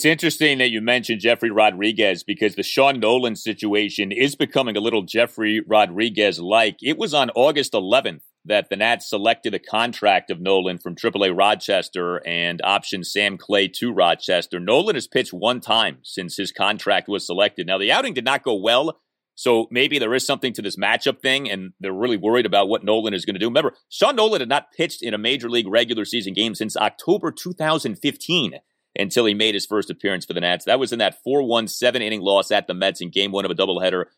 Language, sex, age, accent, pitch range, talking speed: English, male, 30-49, American, 100-140 Hz, 205 wpm